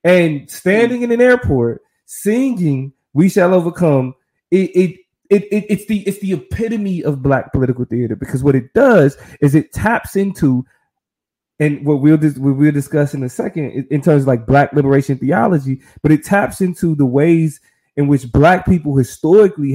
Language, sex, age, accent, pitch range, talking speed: English, male, 20-39, American, 140-185 Hz, 175 wpm